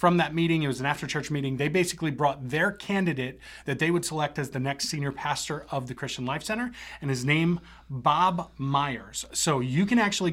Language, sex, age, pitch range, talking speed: English, male, 30-49, 140-180 Hz, 215 wpm